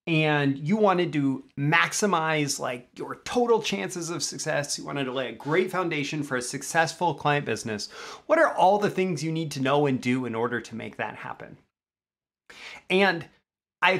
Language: English